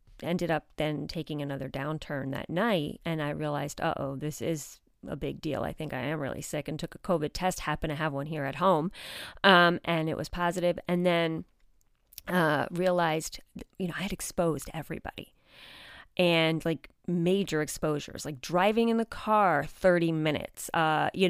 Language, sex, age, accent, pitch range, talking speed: English, female, 30-49, American, 155-190 Hz, 180 wpm